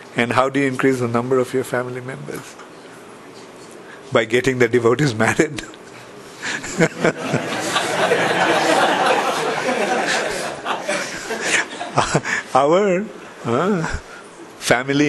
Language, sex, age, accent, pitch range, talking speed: English, male, 50-69, Indian, 120-140 Hz, 75 wpm